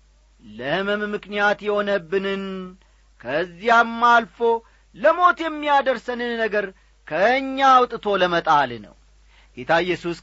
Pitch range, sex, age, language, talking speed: 155-235 Hz, male, 40-59, Amharic, 80 wpm